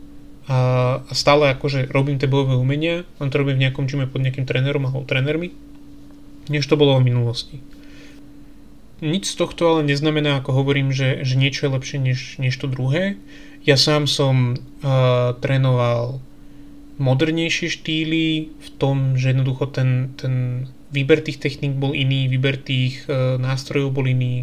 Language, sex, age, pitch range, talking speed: Slovak, male, 30-49, 130-145 Hz, 155 wpm